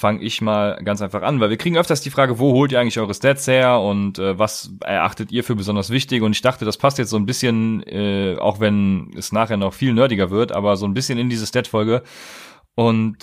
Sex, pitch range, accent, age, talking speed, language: male, 105-130 Hz, German, 30-49, 240 wpm, German